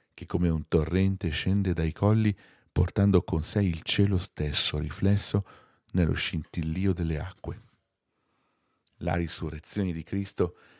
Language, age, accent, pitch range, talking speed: Italian, 40-59, native, 80-100 Hz, 120 wpm